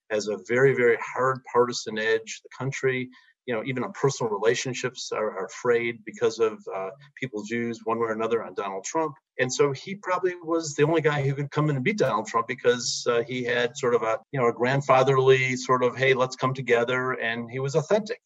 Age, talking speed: 40-59, 220 wpm